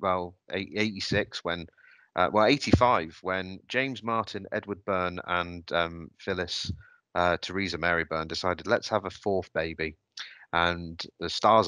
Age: 30-49